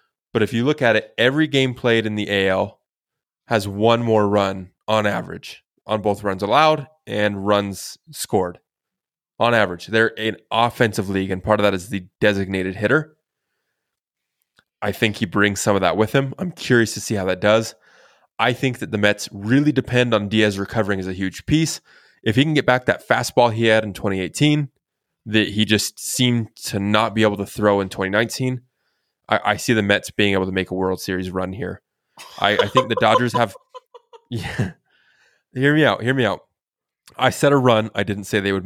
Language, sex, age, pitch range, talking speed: English, male, 20-39, 100-120 Hz, 195 wpm